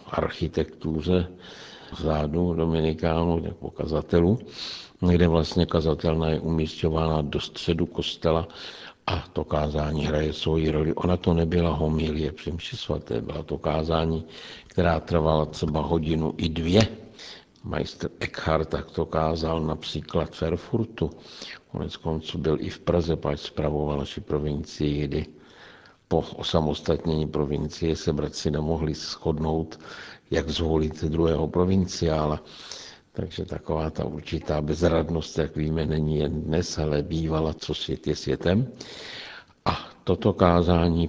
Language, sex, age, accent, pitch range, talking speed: Czech, male, 60-79, native, 75-85 Hz, 115 wpm